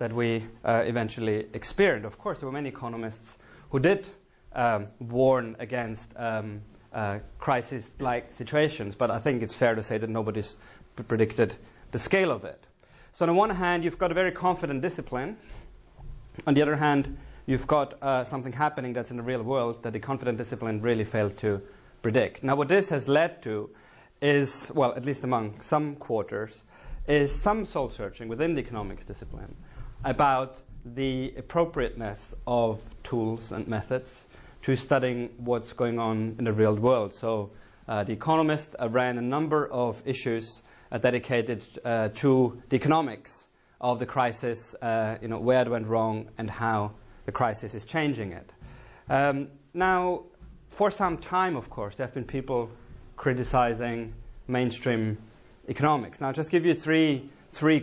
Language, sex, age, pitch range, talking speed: English, male, 30-49, 115-140 Hz, 165 wpm